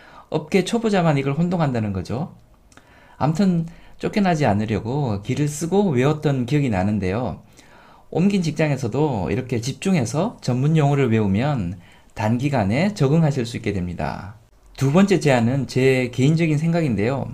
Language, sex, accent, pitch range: Korean, male, native, 115-160 Hz